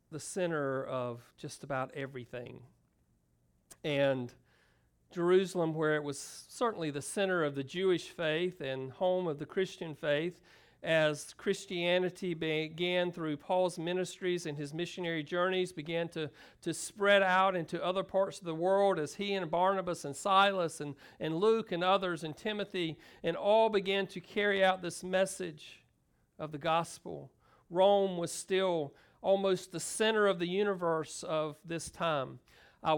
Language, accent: English, American